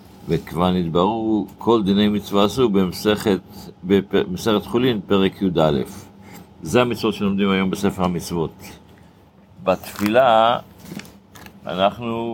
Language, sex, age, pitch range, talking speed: Hebrew, male, 60-79, 95-110 Hz, 90 wpm